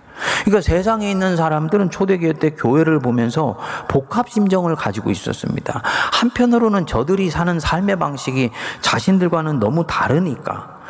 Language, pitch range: Korean, 125-180 Hz